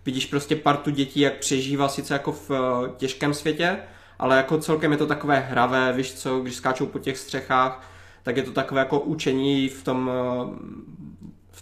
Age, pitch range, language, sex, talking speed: 20-39, 125-145 Hz, Czech, male, 175 wpm